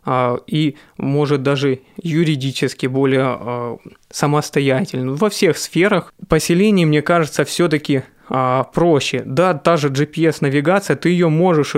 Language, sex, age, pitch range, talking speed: Russian, male, 20-39, 135-165 Hz, 105 wpm